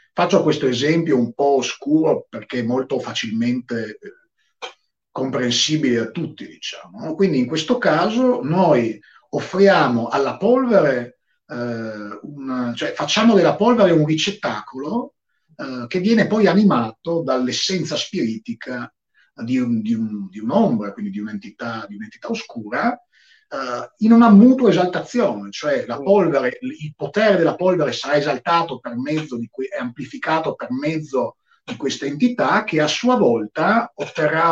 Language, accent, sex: Italian, native, male